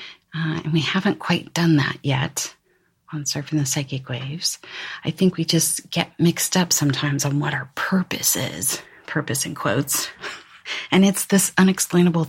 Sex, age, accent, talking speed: female, 30-49, American, 160 wpm